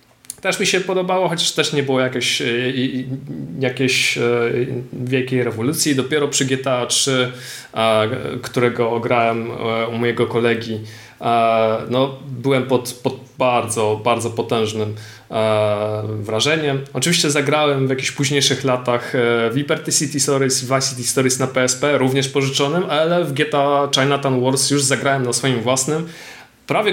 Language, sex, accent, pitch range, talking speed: Polish, male, native, 120-145 Hz, 125 wpm